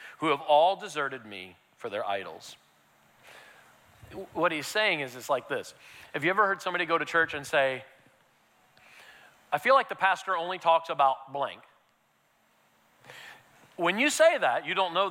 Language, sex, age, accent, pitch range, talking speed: English, male, 40-59, American, 170-235 Hz, 165 wpm